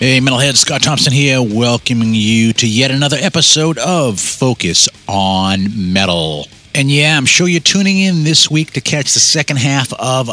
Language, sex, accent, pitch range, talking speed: English, male, American, 115-150 Hz, 175 wpm